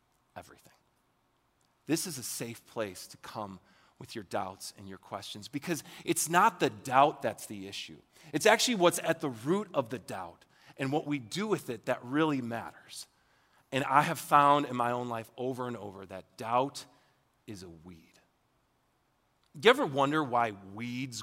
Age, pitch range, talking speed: 30-49, 125-185 Hz, 170 wpm